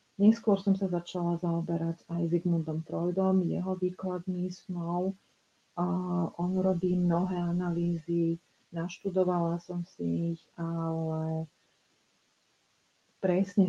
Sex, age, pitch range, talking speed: female, 40-59, 165-185 Hz, 95 wpm